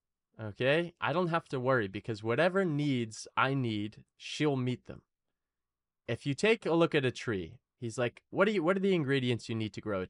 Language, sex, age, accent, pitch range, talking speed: English, male, 20-39, American, 100-140 Hz, 200 wpm